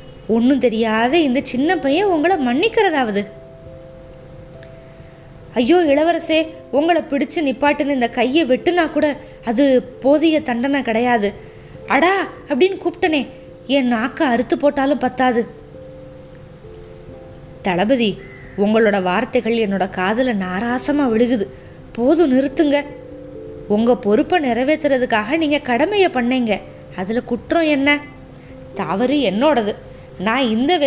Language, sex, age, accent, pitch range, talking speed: Tamil, female, 20-39, native, 210-290 Hz, 95 wpm